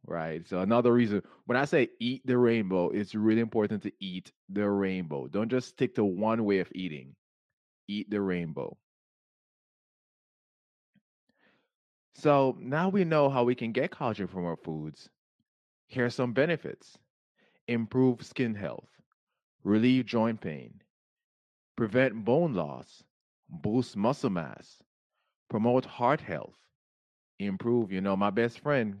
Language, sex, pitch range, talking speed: English, male, 95-135 Hz, 135 wpm